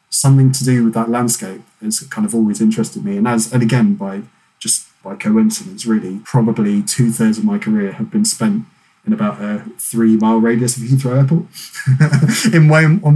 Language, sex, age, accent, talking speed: English, male, 20-39, British, 185 wpm